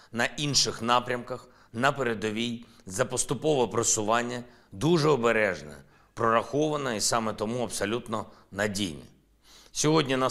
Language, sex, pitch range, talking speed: Ukrainian, male, 110-130 Hz, 105 wpm